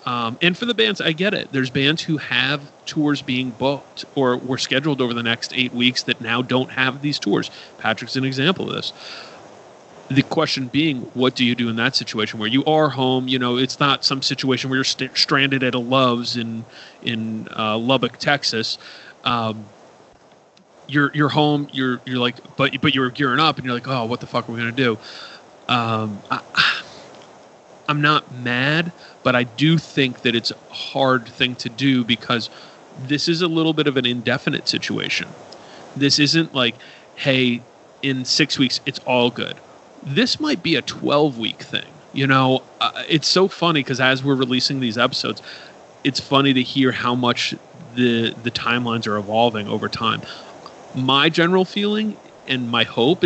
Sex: male